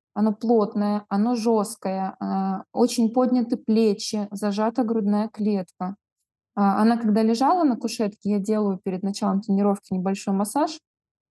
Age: 20-39